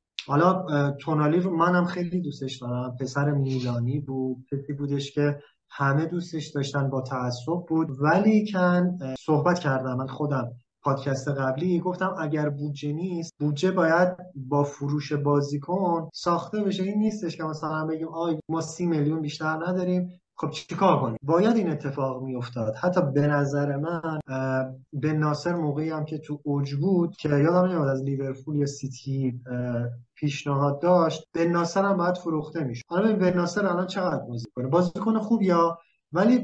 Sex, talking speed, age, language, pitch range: male, 160 wpm, 30-49, Persian, 140-180 Hz